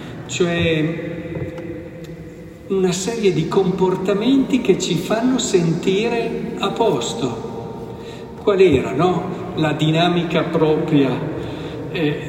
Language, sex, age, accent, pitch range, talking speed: Italian, male, 50-69, native, 150-195 Hz, 85 wpm